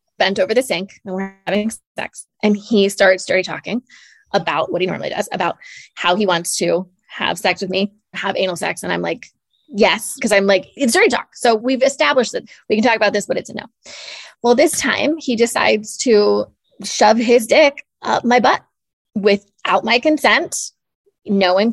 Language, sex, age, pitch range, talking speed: English, female, 20-39, 200-250 Hz, 190 wpm